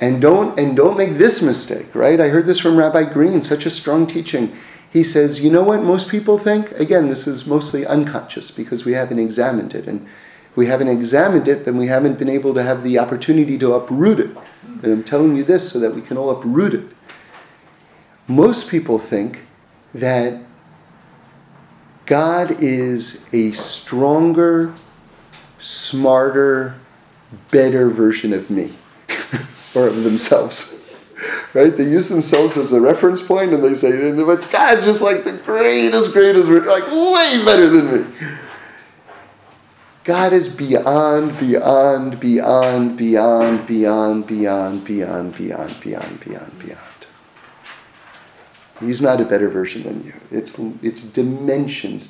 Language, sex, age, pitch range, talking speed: English, male, 40-59, 120-165 Hz, 145 wpm